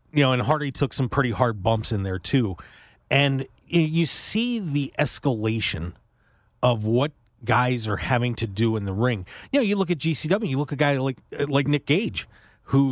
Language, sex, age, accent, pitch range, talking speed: English, male, 40-59, American, 115-165 Hz, 200 wpm